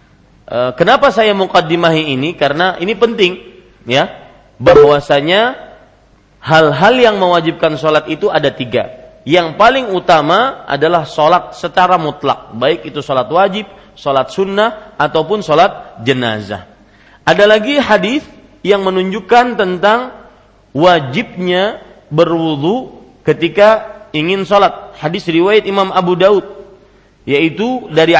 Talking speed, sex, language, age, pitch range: 105 wpm, male, Malay, 40-59, 155-205 Hz